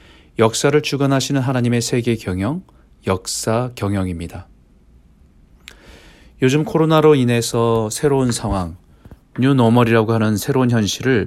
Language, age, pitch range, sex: Korean, 40-59, 90-130 Hz, male